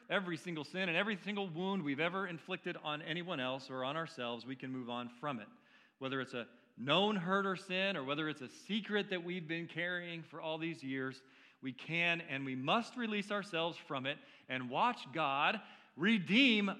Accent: American